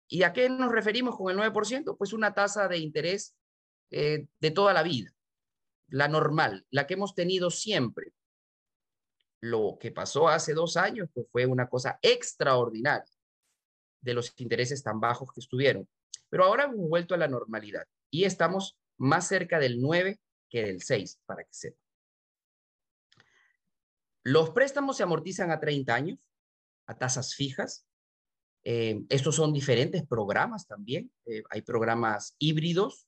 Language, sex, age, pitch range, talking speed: Spanish, male, 30-49, 120-185 Hz, 150 wpm